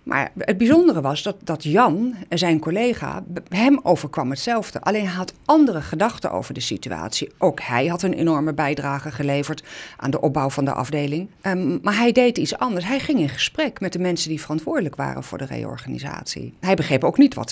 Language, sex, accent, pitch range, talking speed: Dutch, female, Dutch, 145-220 Hz, 195 wpm